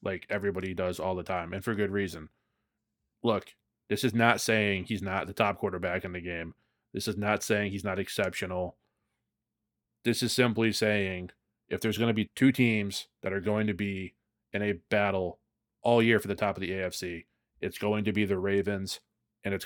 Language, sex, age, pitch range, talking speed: English, male, 30-49, 95-115 Hz, 200 wpm